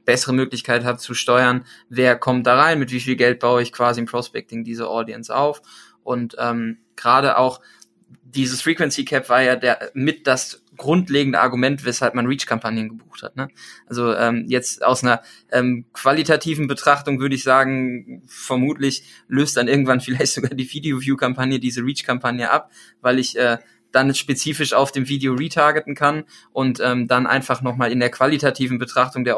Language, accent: German, German